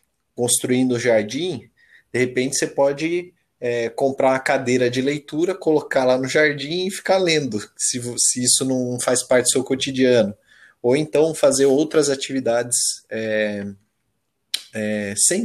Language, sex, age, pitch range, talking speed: Portuguese, male, 20-39, 115-145 Hz, 130 wpm